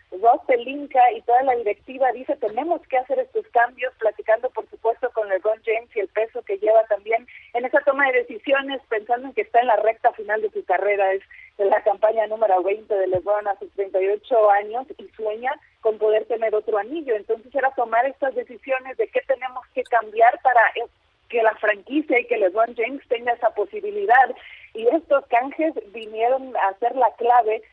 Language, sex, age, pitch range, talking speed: Spanish, female, 40-59, 215-270 Hz, 190 wpm